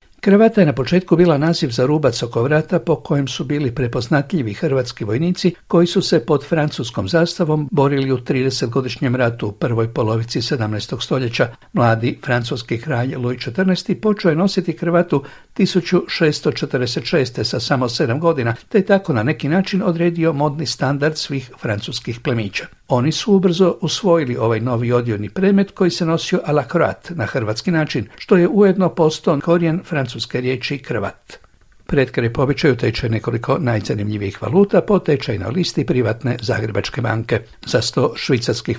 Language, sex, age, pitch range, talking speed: Croatian, male, 60-79, 120-170 Hz, 150 wpm